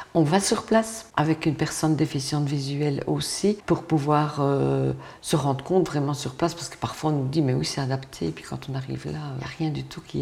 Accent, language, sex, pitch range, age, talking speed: French, French, female, 135-160 Hz, 50-69, 245 wpm